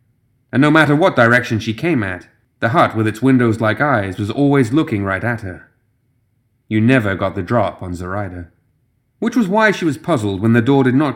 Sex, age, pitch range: male, 30-49, 105-130 Hz